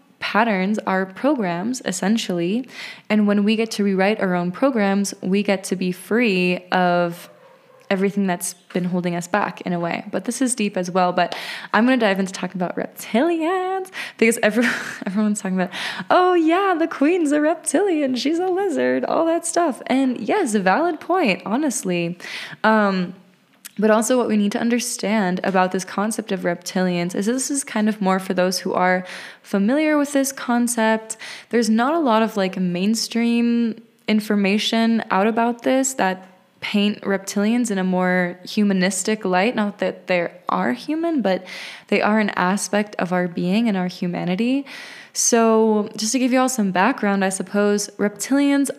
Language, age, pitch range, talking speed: English, 20-39, 190-245 Hz, 170 wpm